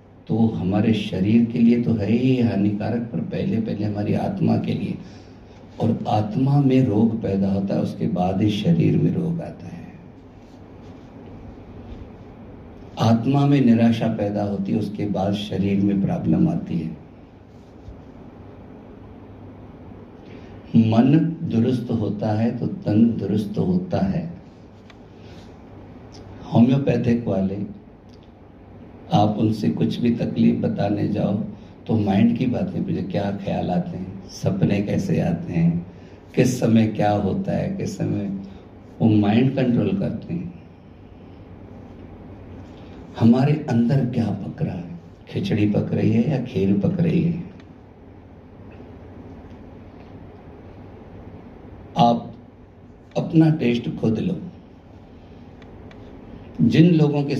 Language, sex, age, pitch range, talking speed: Hindi, male, 50-69, 95-120 Hz, 115 wpm